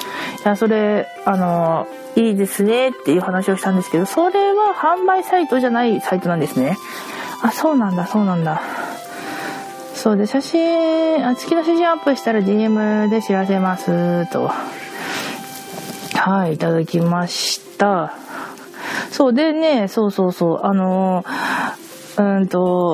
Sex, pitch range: female, 180-255 Hz